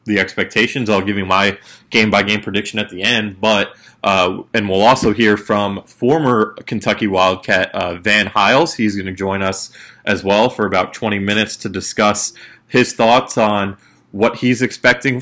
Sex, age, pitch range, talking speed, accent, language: male, 20-39, 95-110 Hz, 175 wpm, American, English